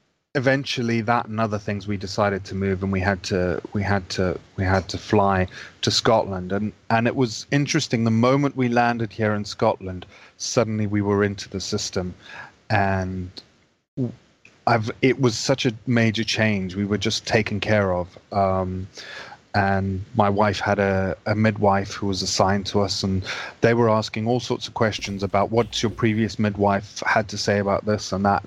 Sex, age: male, 30-49